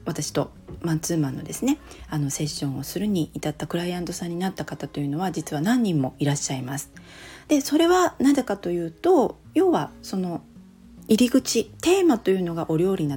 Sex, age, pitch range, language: female, 40-59, 150-215 Hz, Japanese